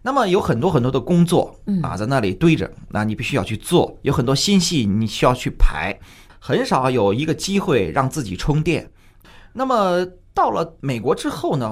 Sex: male